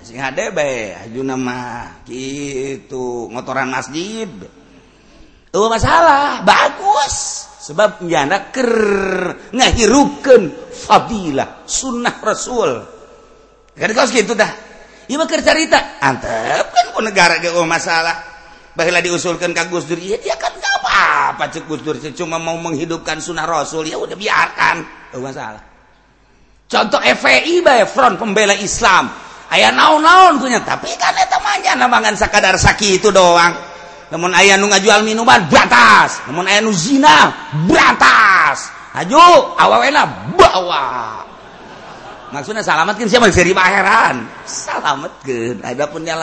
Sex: male